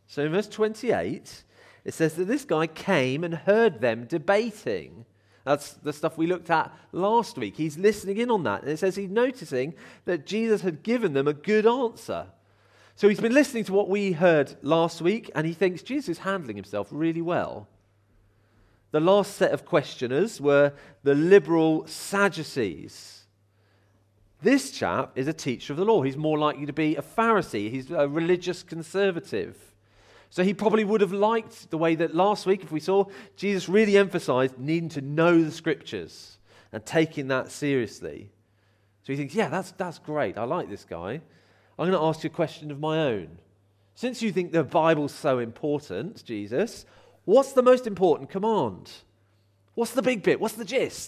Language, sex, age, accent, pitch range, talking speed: English, male, 40-59, British, 130-195 Hz, 180 wpm